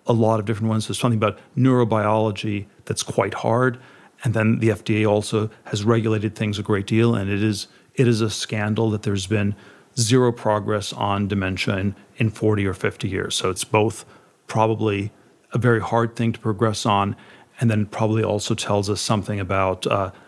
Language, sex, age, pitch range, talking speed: English, male, 40-59, 105-115 Hz, 185 wpm